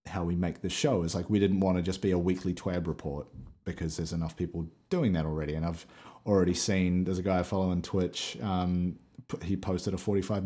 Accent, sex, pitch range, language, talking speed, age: Australian, male, 85-100 Hz, English, 230 wpm, 30-49